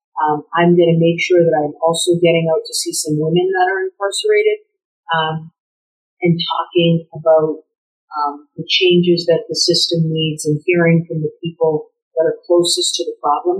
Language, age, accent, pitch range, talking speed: English, 50-69, American, 165-185 Hz, 175 wpm